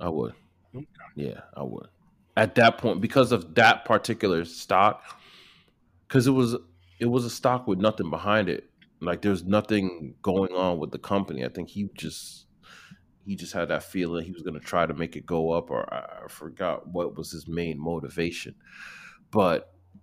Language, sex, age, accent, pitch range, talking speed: English, male, 30-49, American, 90-115 Hz, 180 wpm